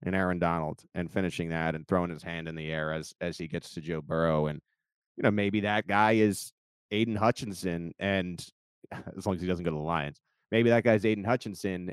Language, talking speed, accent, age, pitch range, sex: English, 220 wpm, American, 30-49, 90-105 Hz, male